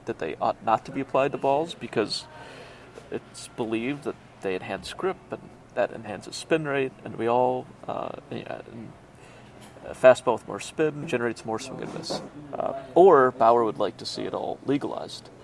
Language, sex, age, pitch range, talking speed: English, male, 30-49, 120-140 Hz, 180 wpm